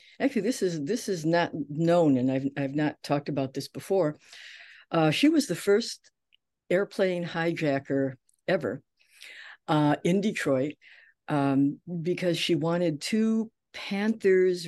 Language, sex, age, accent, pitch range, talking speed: English, female, 60-79, American, 140-190 Hz, 130 wpm